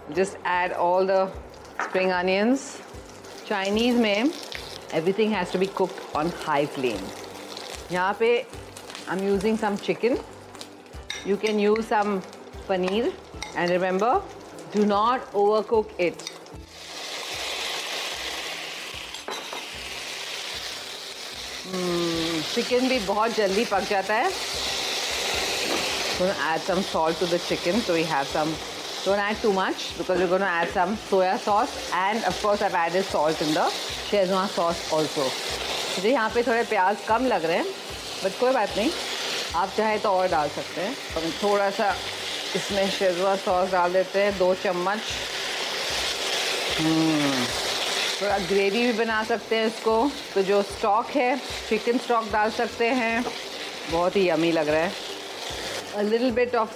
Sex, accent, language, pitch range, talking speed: female, native, Hindi, 185-225 Hz, 135 wpm